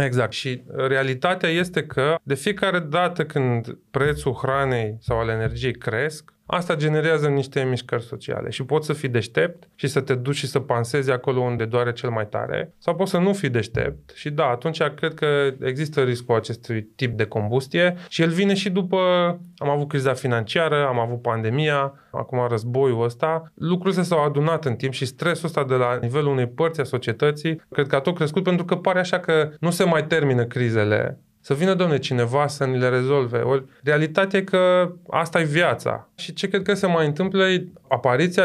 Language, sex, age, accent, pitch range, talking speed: Romanian, male, 20-39, native, 125-165 Hz, 190 wpm